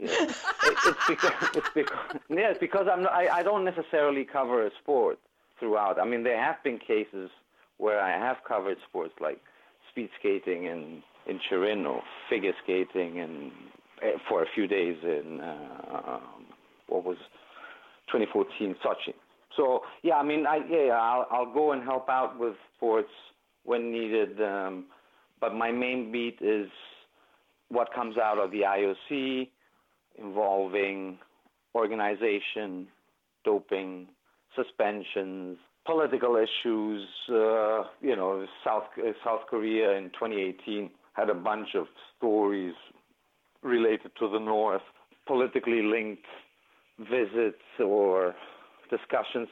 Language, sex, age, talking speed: English, male, 50-69, 130 wpm